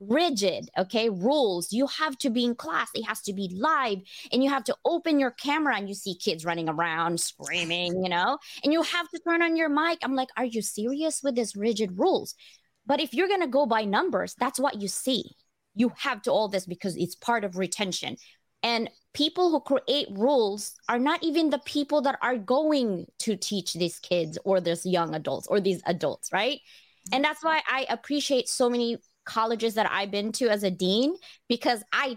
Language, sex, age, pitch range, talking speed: English, female, 20-39, 200-280 Hz, 205 wpm